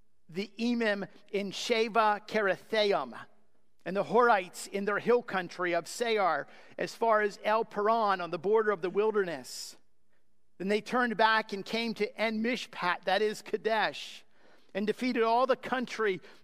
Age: 50-69